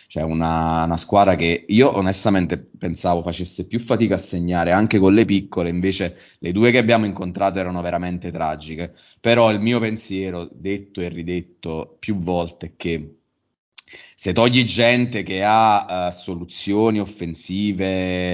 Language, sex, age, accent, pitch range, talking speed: Italian, male, 30-49, native, 85-100 Hz, 150 wpm